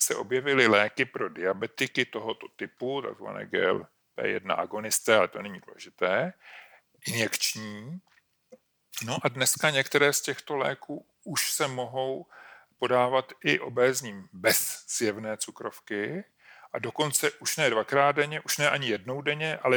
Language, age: Czech, 40-59